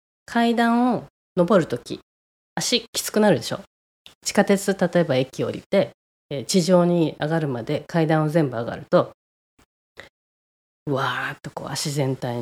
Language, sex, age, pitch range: Japanese, female, 20-39, 130-180 Hz